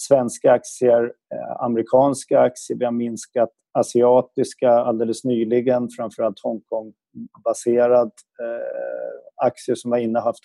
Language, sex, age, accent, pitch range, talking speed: Swedish, male, 30-49, native, 110-130 Hz, 100 wpm